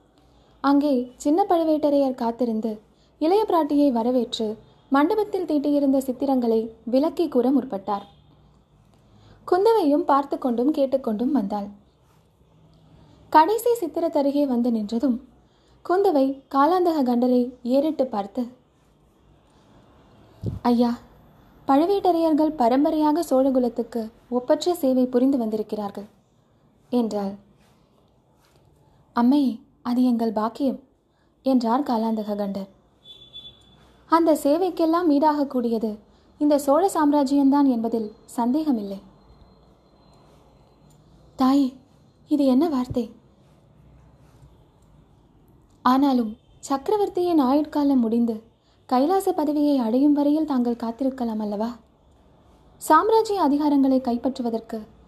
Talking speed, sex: 65 wpm, female